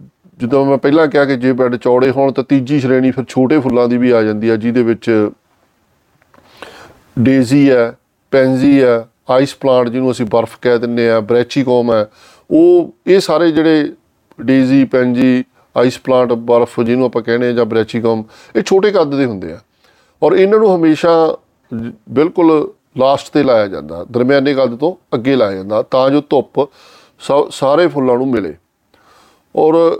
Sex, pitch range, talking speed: male, 120-145 Hz, 160 wpm